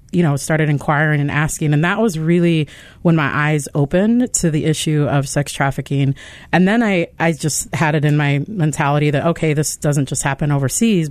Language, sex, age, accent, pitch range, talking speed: English, female, 40-59, American, 140-170 Hz, 200 wpm